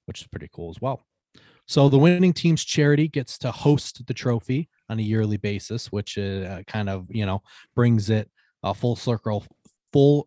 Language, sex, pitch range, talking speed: English, male, 100-125 Hz, 180 wpm